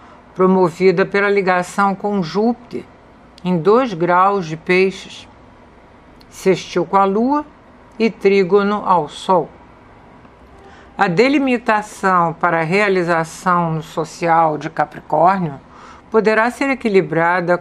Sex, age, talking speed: female, 60-79, 100 wpm